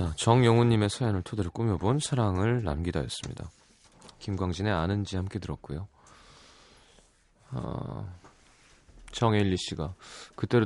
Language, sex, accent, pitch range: Korean, male, native, 90-125 Hz